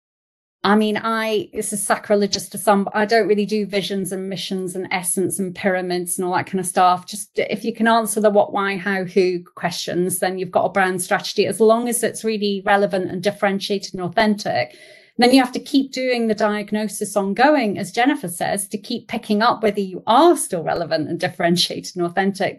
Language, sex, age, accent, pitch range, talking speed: English, female, 30-49, British, 190-225 Hz, 205 wpm